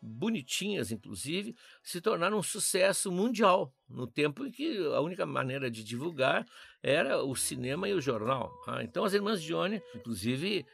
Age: 60-79